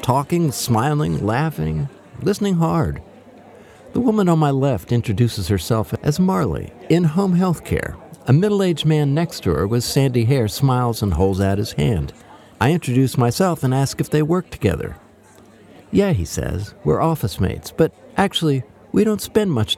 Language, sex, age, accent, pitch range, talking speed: English, male, 50-69, American, 110-165 Hz, 165 wpm